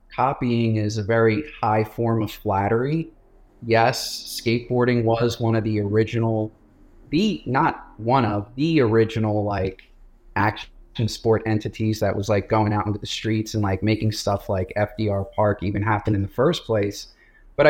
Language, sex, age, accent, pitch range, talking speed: English, male, 30-49, American, 105-125 Hz, 165 wpm